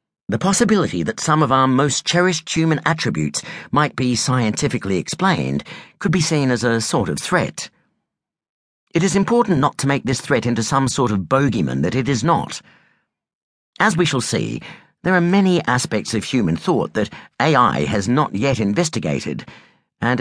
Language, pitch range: English, 115-165 Hz